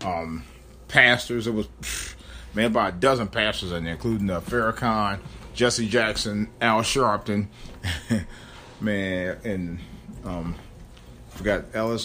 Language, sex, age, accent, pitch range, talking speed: English, male, 40-59, American, 85-115 Hz, 125 wpm